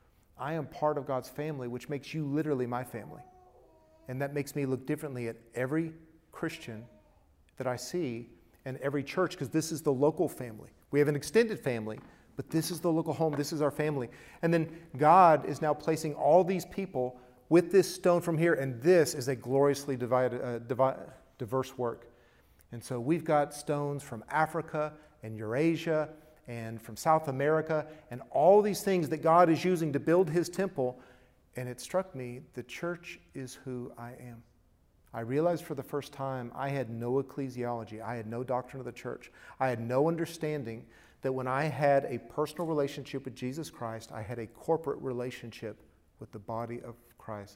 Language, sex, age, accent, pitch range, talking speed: English, male, 40-59, American, 120-155 Hz, 185 wpm